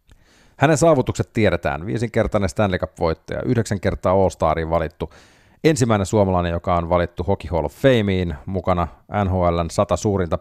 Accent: native